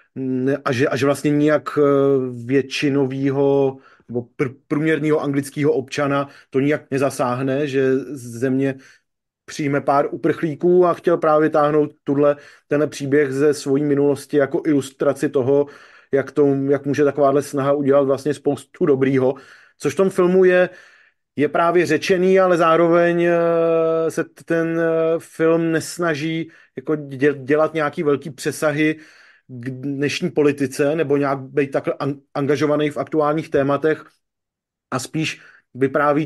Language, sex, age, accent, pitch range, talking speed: Czech, male, 30-49, native, 140-155 Hz, 120 wpm